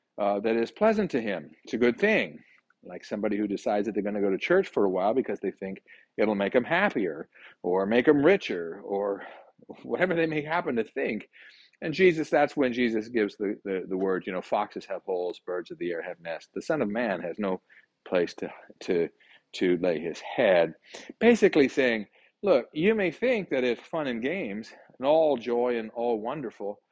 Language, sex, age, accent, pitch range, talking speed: English, male, 40-59, American, 105-165 Hz, 205 wpm